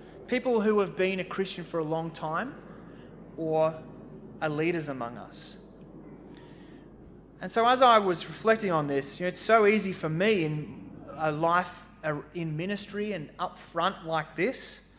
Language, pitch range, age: English, 140-185 Hz, 20-39